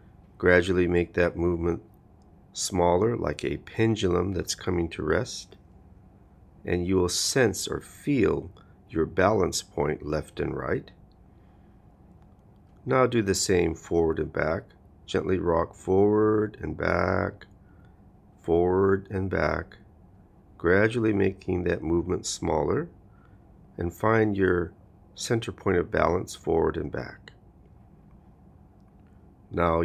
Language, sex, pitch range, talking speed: English, male, 85-100 Hz, 110 wpm